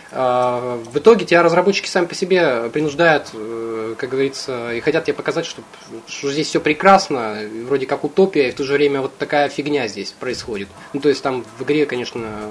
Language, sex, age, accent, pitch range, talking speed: Russian, male, 20-39, native, 120-155 Hz, 185 wpm